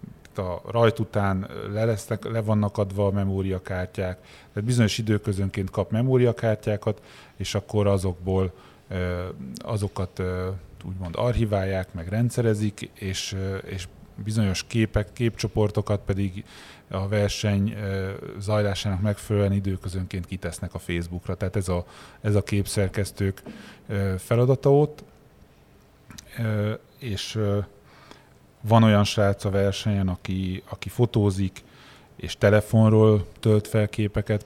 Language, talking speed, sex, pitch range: Hungarian, 100 wpm, male, 95-110 Hz